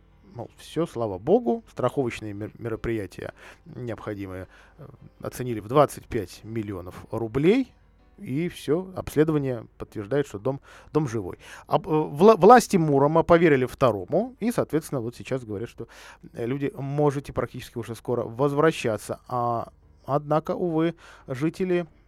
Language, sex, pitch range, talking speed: Russian, male, 115-160 Hz, 115 wpm